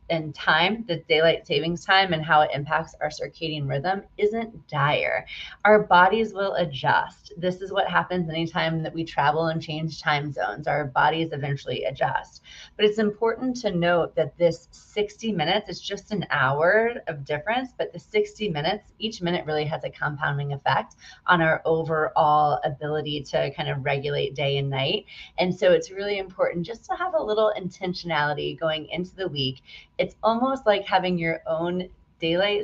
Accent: American